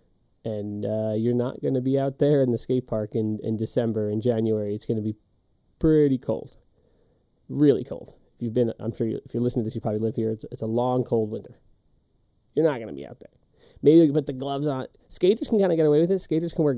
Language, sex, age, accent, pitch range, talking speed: English, male, 30-49, American, 115-130 Hz, 260 wpm